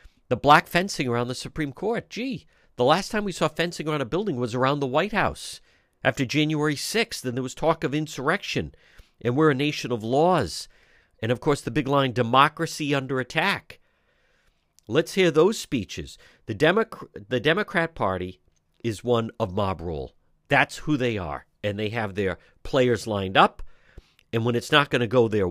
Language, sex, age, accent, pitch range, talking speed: English, male, 50-69, American, 110-155 Hz, 185 wpm